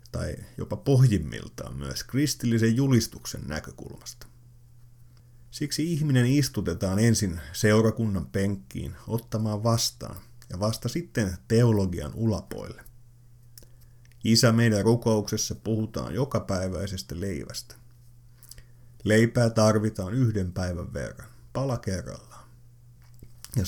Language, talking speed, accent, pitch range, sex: Finnish, 85 wpm, native, 105-120 Hz, male